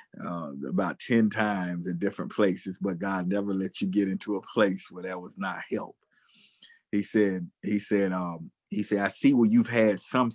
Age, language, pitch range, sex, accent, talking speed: 40-59, English, 95-110 Hz, male, American, 190 wpm